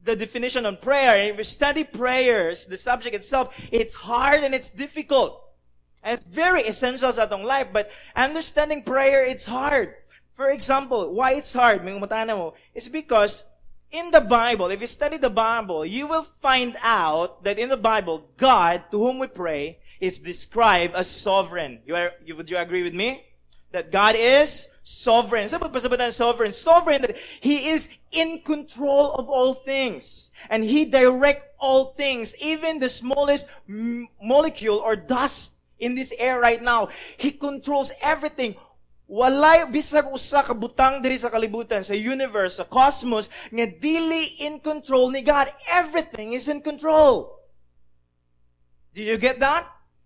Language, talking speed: English, 155 wpm